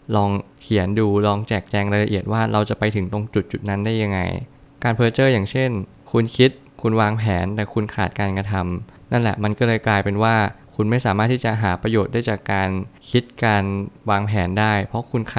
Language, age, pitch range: Thai, 20-39, 100-120 Hz